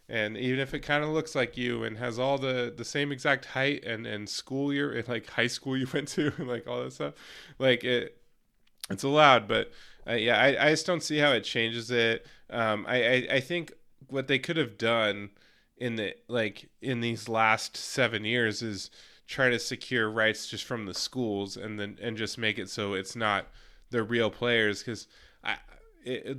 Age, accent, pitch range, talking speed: 20-39, American, 105-135 Hz, 205 wpm